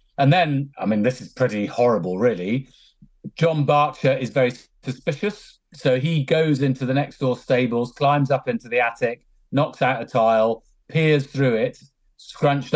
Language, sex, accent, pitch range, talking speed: English, male, British, 115-140 Hz, 165 wpm